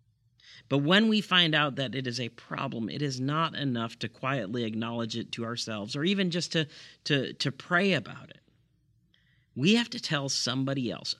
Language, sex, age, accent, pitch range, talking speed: English, male, 40-59, American, 115-145 Hz, 180 wpm